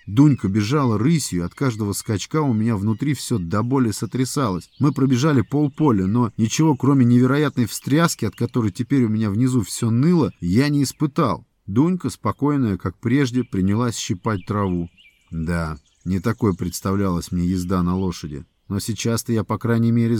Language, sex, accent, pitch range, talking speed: Russian, male, native, 95-120 Hz, 155 wpm